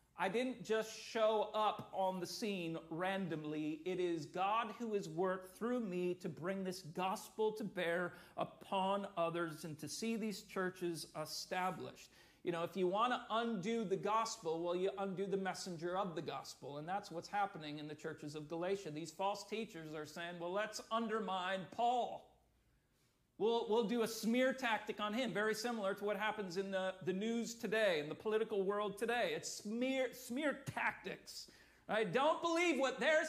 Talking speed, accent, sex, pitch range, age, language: 175 wpm, American, male, 175-225 Hz, 40-59, English